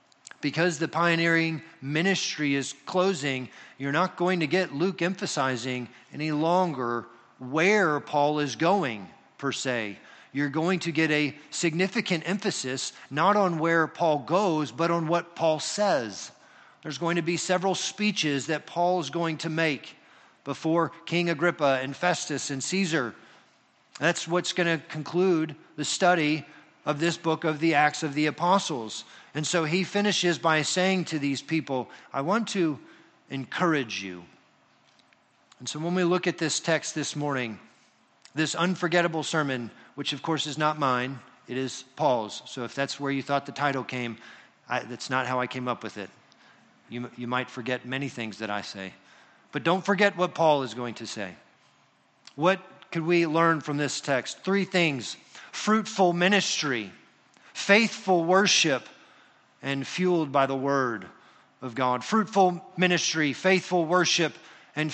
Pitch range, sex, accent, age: 135-180 Hz, male, American, 40-59